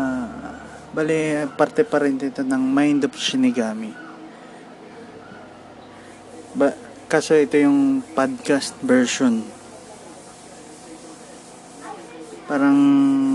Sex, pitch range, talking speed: male, 125-155 Hz, 65 wpm